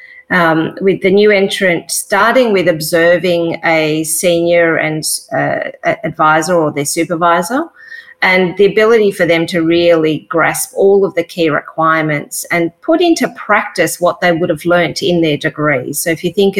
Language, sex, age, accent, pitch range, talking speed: English, female, 30-49, Australian, 160-190 Hz, 165 wpm